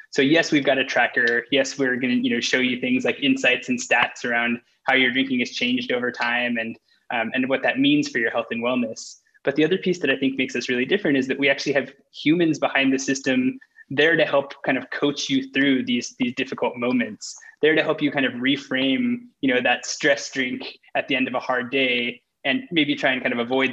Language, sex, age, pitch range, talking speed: English, male, 20-39, 125-175 Hz, 245 wpm